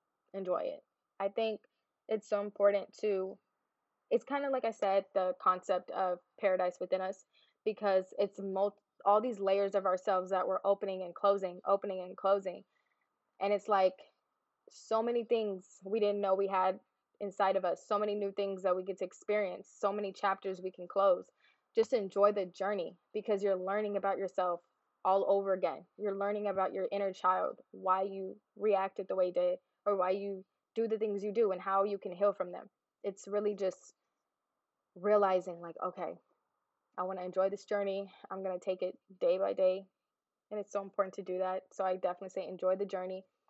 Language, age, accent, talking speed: English, 20-39, American, 190 wpm